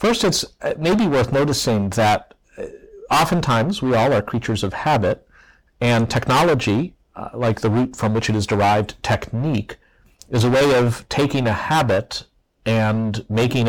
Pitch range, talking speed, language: 105-135 Hz, 150 wpm, English